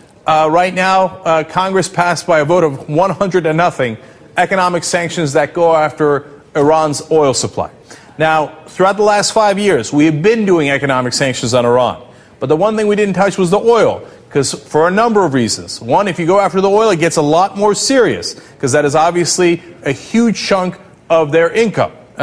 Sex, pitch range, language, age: male, 155-205 Hz, English, 40-59